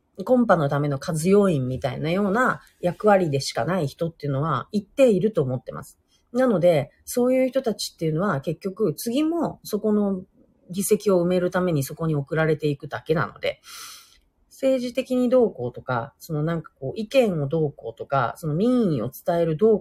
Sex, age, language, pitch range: female, 40-59, Japanese, 140-220 Hz